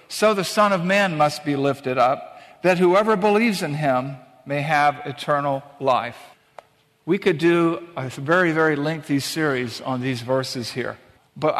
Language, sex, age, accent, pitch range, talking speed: English, male, 50-69, American, 155-190 Hz, 160 wpm